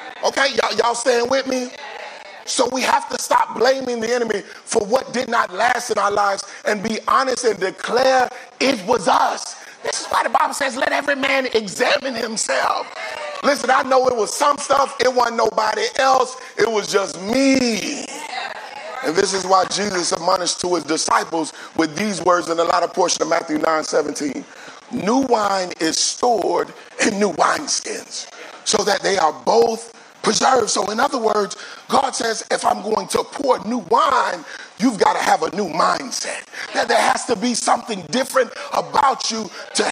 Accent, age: American, 40-59